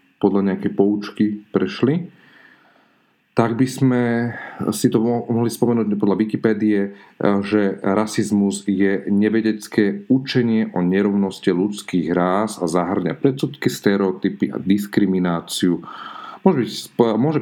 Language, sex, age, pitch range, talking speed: Slovak, male, 40-59, 95-110 Hz, 105 wpm